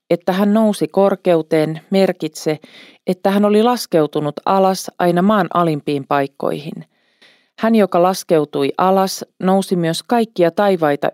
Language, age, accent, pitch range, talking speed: Finnish, 40-59, native, 155-195 Hz, 120 wpm